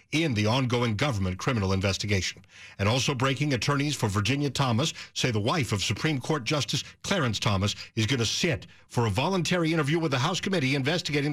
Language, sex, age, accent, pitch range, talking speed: English, male, 60-79, American, 105-150 Hz, 185 wpm